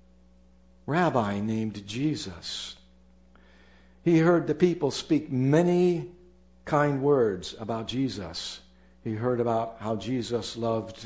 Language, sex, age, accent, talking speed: English, male, 60-79, American, 105 wpm